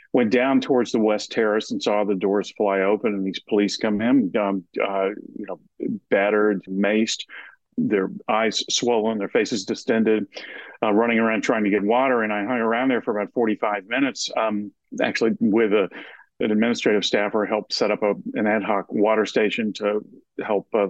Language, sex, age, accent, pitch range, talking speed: English, male, 50-69, American, 100-110 Hz, 185 wpm